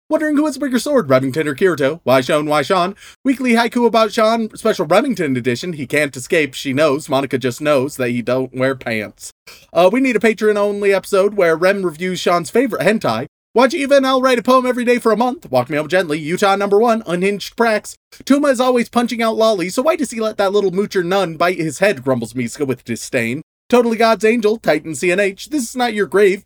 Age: 30-49